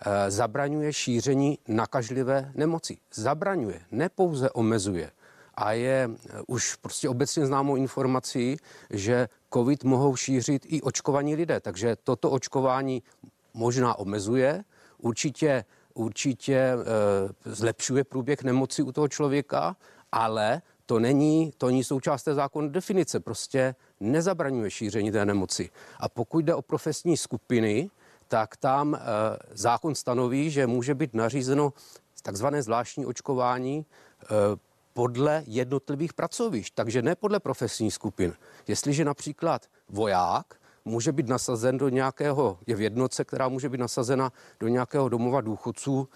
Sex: male